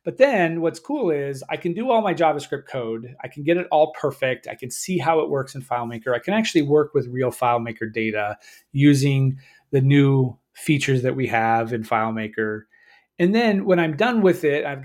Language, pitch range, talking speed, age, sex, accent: English, 130-165 Hz, 205 wpm, 30-49, male, American